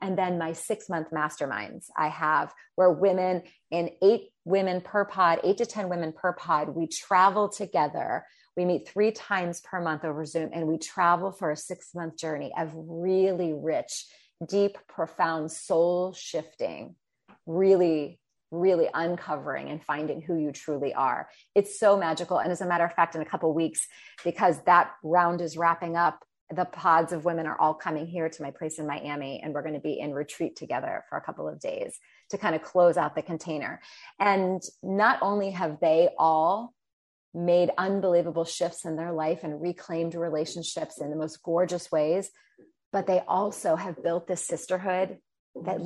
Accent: American